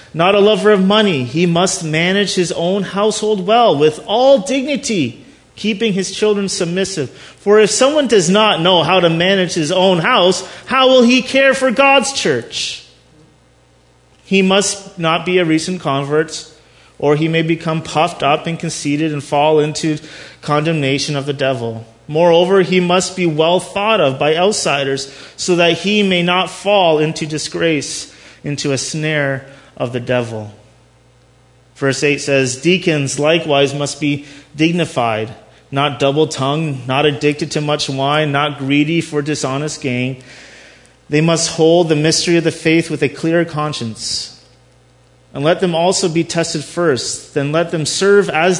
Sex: male